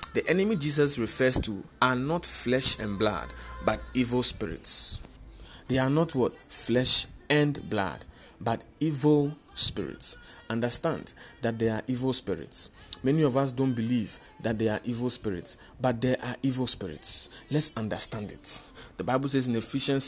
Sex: male